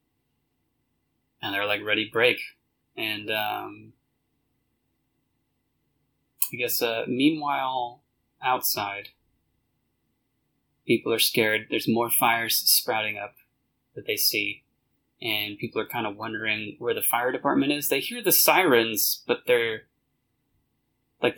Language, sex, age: English, male, 20-39